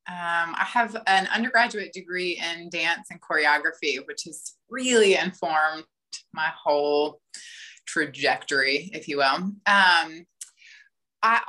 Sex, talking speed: female, 115 wpm